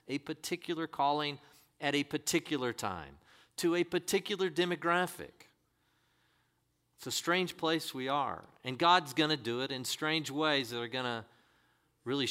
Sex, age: male, 50-69